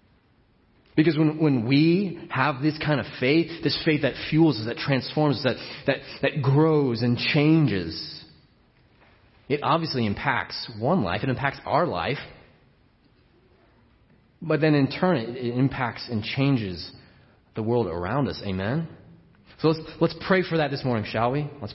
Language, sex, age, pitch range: English, male, 30-49, 115-150 Hz